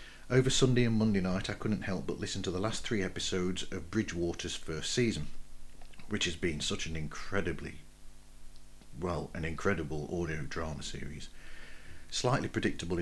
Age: 40-59